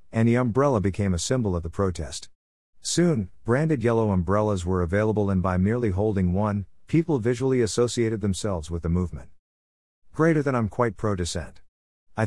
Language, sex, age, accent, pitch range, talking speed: English, male, 50-69, American, 90-110 Hz, 160 wpm